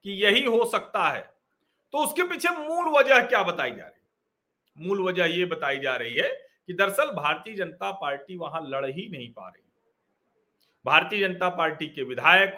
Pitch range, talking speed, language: 165-250 Hz, 180 wpm, Hindi